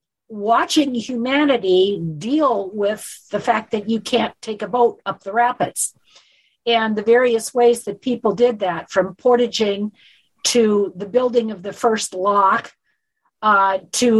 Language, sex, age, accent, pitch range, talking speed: English, female, 50-69, American, 195-240 Hz, 145 wpm